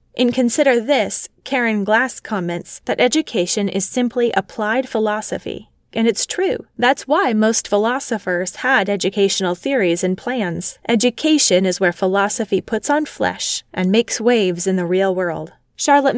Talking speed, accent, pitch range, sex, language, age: 145 wpm, American, 185-255 Hz, female, English, 20-39